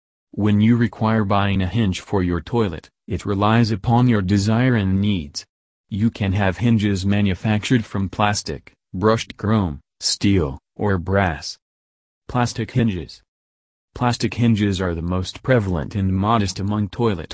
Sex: male